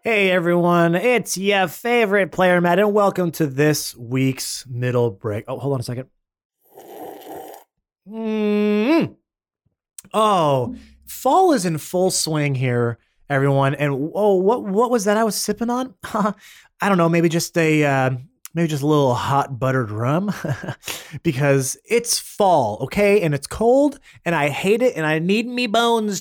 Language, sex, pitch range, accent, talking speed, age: English, male, 140-210 Hz, American, 155 wpm, 30-49